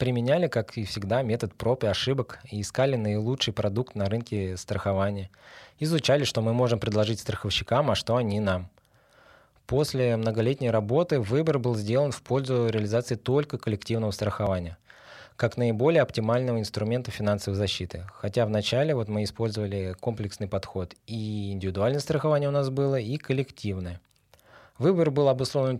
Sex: male